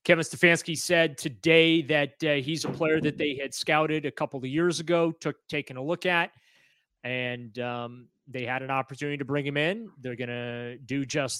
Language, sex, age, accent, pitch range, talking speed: English, male, 30-49, American, 130-170 Hz, 200 wpm